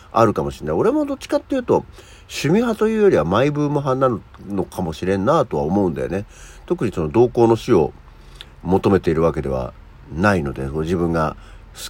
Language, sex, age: Japanese, male, 50-69